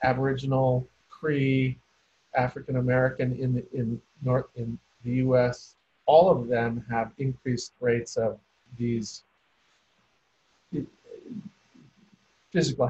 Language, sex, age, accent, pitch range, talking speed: English, male, 50-69, American, 120-150 Hz, 70 wpm